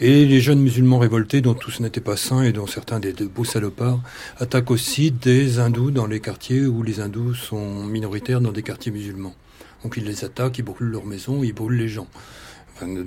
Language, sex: French, male